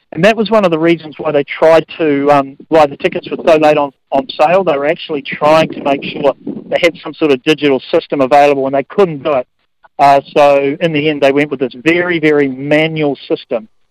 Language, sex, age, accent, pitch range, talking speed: English, male, 50-69, Australian, 150-200 Hz, 230 wpm